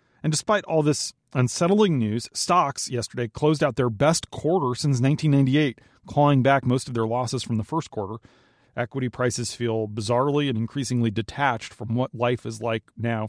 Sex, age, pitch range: male, 40-59, 115-140 Hz